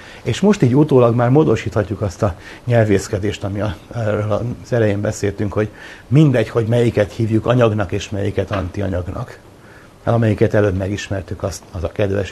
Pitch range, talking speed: 100-120 Hz, 140 wpm